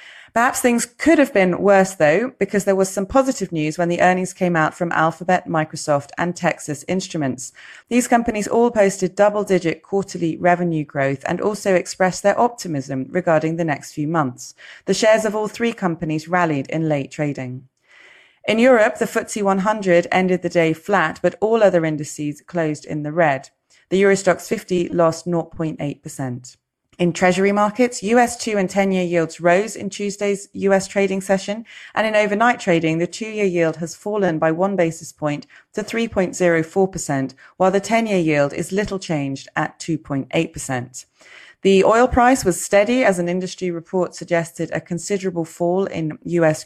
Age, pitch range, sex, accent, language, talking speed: 30-49, 160-200 Hz, female, British, English, 165 wpm